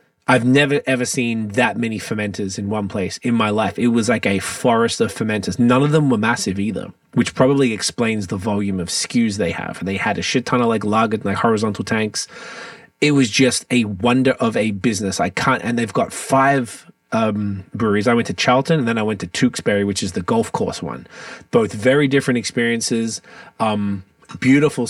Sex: male